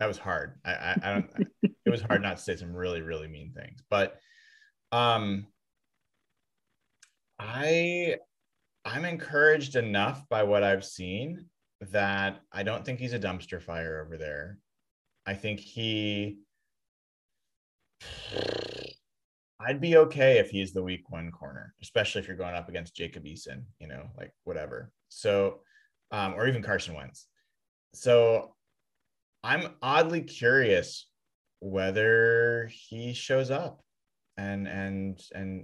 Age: 30-49